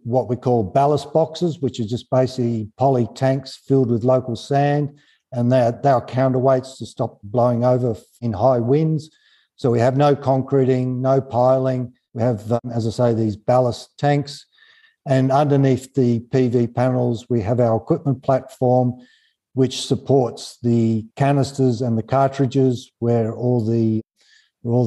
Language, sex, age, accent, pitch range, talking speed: English, male, 50-69, Australian, 115-135 Hz, 145 wpm